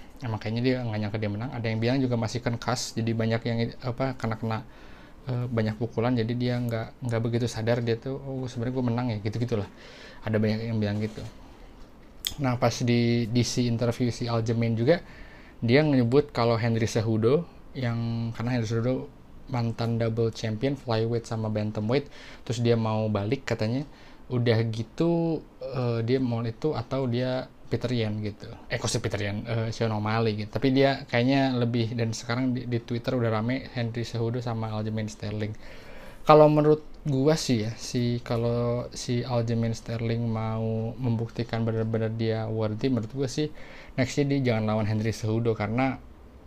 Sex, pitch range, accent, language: male, 115-125 Hz, native, Indonesian